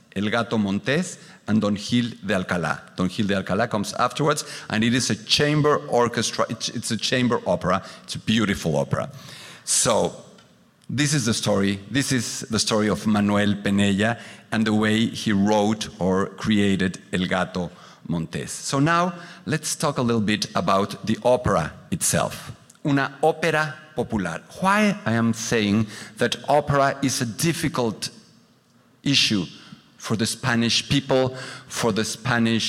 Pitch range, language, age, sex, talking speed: 105-145 Hz, English, 50-69, male, 150 wpm